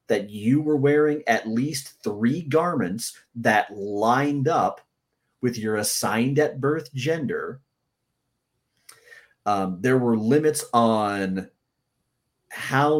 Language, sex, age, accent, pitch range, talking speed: English, male, 30-49, American, 115-150 Hz, 105 wpm